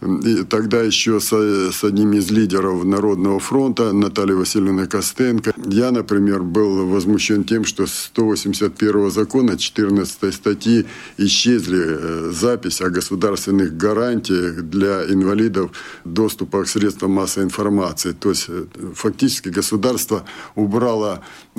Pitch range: 95-115 Hz